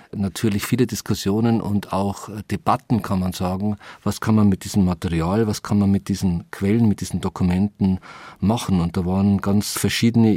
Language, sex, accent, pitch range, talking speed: German, male, German, 95-110 Hz, 175 wpm